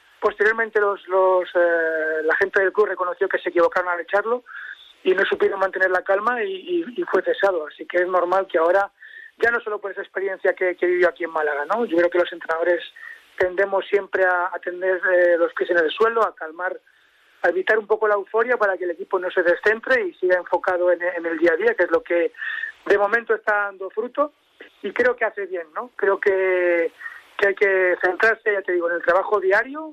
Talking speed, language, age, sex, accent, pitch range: 225 wpm, Spanish, 30-49, male, Spanish, 180-235 Hz